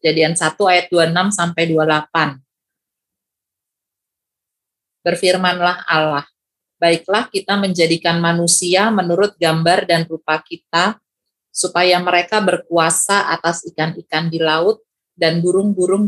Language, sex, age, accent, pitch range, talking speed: Indonesian, female, 30-49, native, 160-185 Hz, 95 wpm